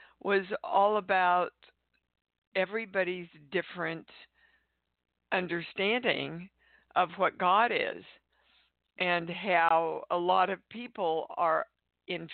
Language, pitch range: English, 165-200 Hz